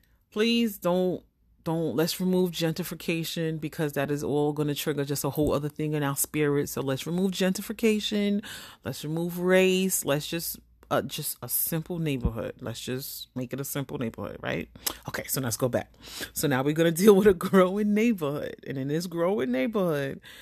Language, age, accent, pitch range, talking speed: English, 30-49, American, 135-205 Hz, 185 wpm